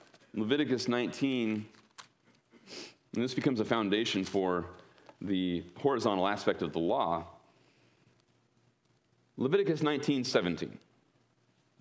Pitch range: 105-150 Hz